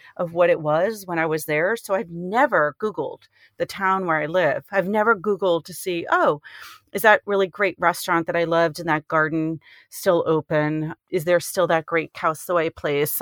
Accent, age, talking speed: American, 40-59, 200 wpm